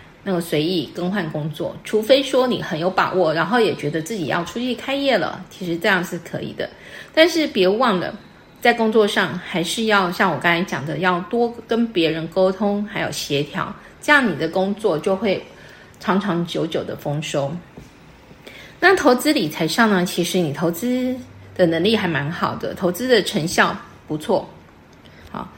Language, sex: Chinese, female